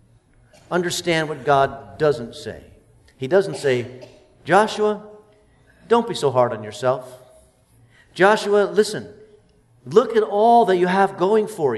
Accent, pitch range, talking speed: American, 170-225 Hz, 125 wpm